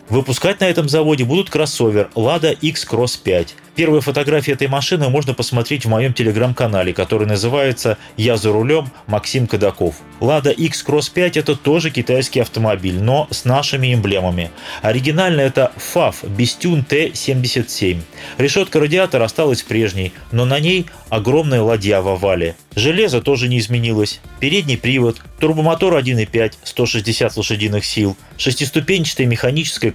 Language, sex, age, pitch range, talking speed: Russian, male, 30-49, 115-150 Hz, 130 wpm